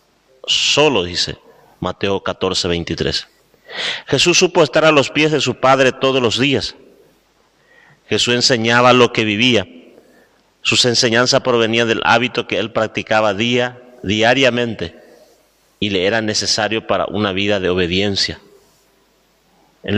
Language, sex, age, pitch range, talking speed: Spanish, male, 30-49, 100-130 Hz, 125 wpm